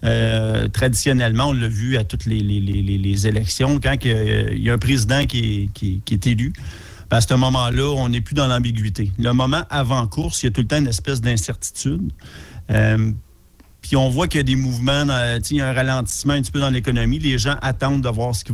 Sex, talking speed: male, 245 wpm